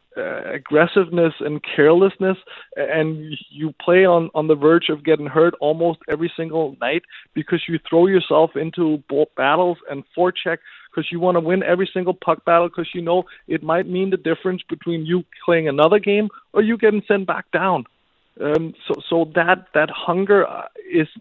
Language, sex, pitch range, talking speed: English, male, 150-175 Hz, 175 wpm